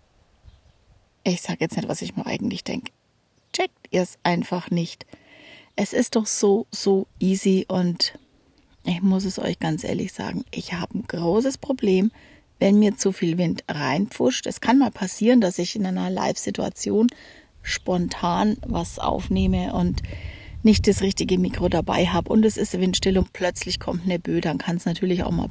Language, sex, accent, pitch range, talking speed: German, female, German, 175-215 Hz, 170 wpm